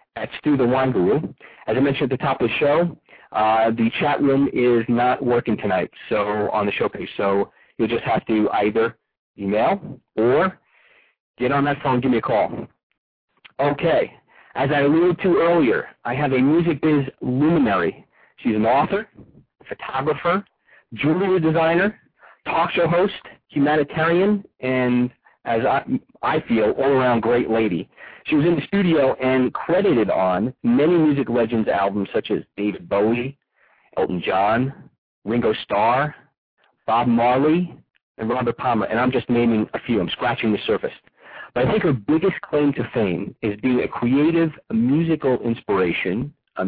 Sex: male